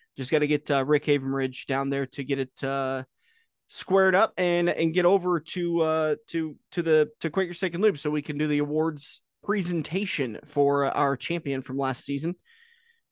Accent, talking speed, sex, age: American, 195 wpm, male, 30-49